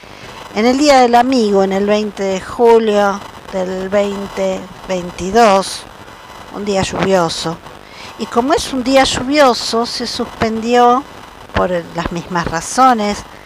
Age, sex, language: 50-69, female, Spanish